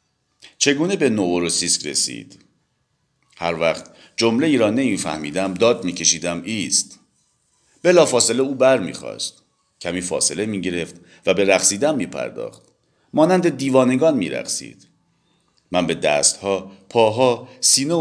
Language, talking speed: English, 115 wpm